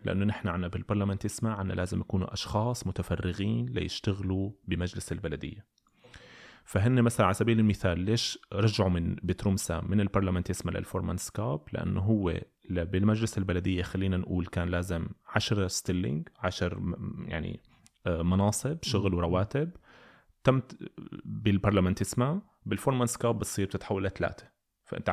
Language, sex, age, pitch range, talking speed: Arabic, male, 30-49, 90-110 Hz, 110 wpm